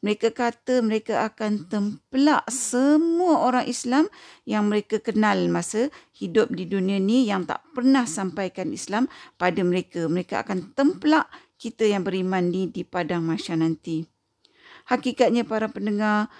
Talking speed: 135 wpm